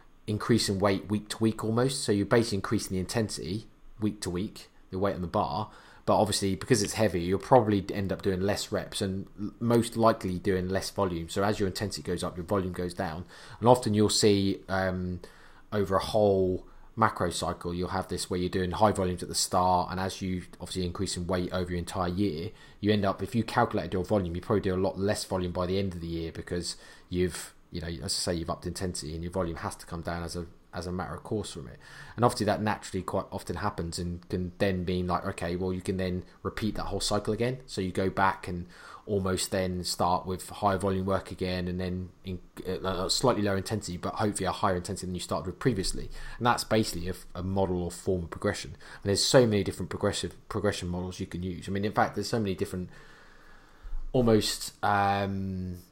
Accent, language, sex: British, English, male